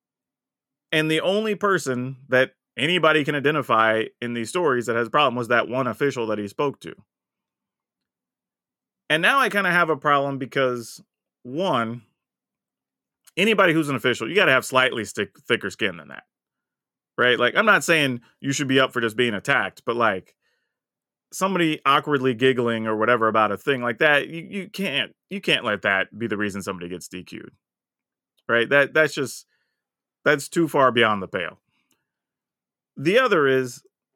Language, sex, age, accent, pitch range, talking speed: English, male, 30-49, American, 120-155 Hz, 170 wpm